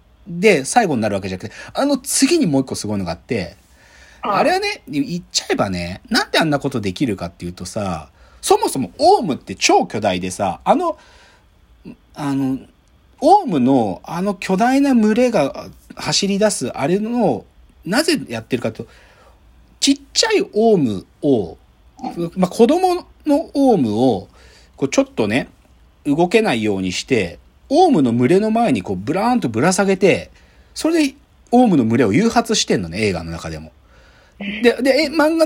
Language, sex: Japanese, male